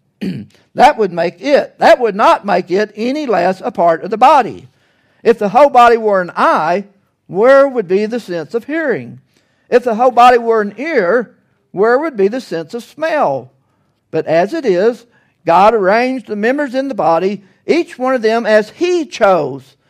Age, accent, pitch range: 60-79, American, 175-250 Hz